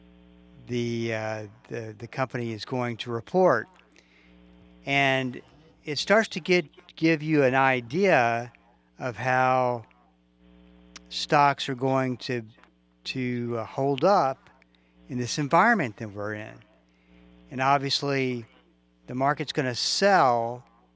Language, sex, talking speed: English, male, 115 wpm